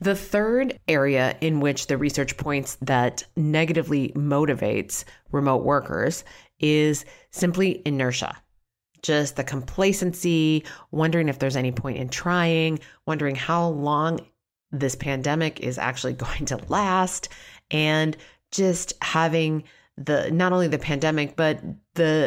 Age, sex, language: 30-49, female, English